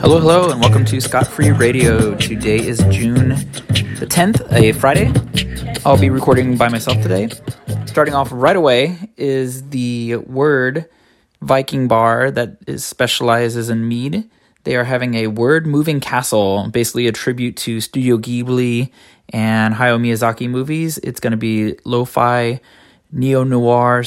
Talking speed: 140 wpm